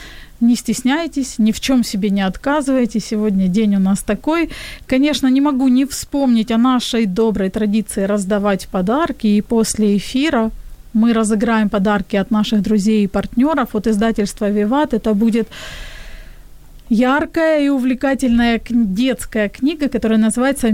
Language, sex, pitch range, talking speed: Ukrainian, female, 215-260 Hz, 135 wpm